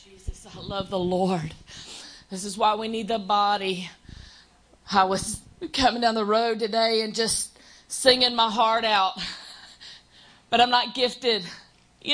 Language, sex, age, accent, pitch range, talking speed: English, female, 40-59, American, 205-250 Hz, 150 wpm